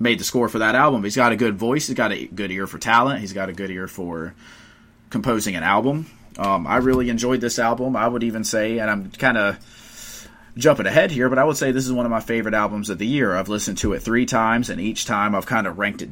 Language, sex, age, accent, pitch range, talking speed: English, male, 30-49, American, 95-125 Hz, 270 wpm